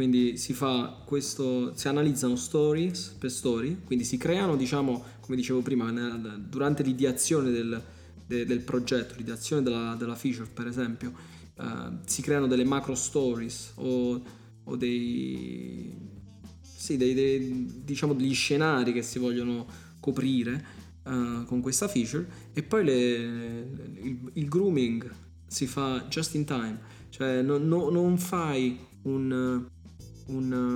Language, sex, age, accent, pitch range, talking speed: Italian, male, 20-39, native, 120-140 Hz, 140 wpm